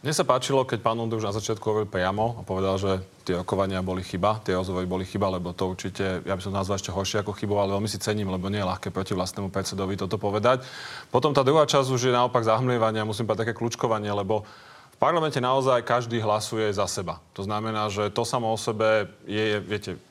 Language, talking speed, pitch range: Slovak, 230 wpm, 105-125 Hz